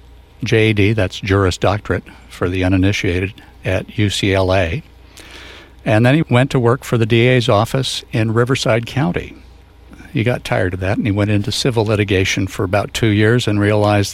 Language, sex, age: English, male, 60-79